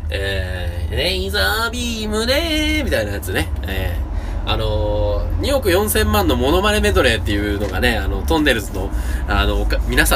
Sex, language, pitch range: male, Japanese, 75-120 Hz